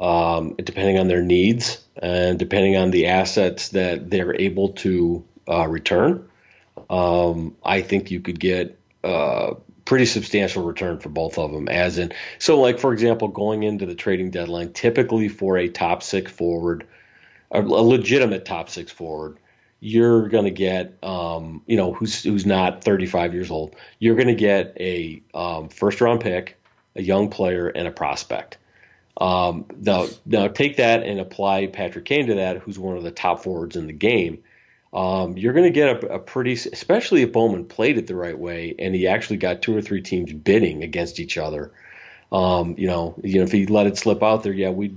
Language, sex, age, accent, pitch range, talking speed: English, male, 40-59, American, 90-110 Hz, 190 wpm